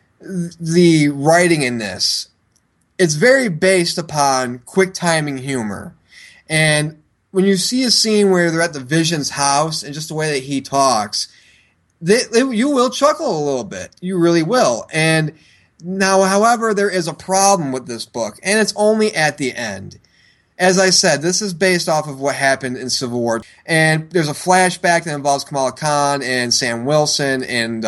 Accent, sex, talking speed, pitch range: American, male, 170 wpm, 150-210 Hz